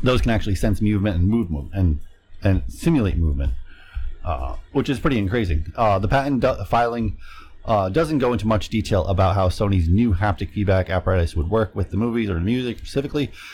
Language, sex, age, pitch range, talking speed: English, male, 30-49, 80-110 Hz, 200 wpm